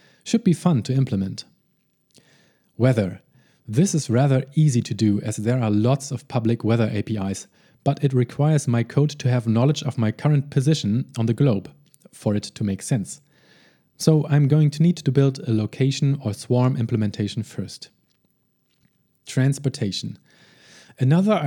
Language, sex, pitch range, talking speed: English, male, 115-145 Hz, 155 wpm